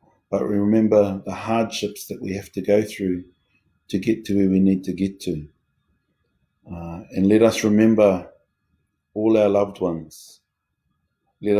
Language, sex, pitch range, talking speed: English, male, 90-105 Hz, 155 wpm